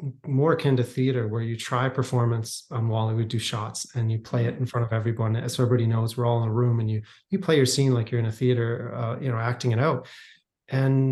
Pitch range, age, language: 120-140 Hz, 30-49, English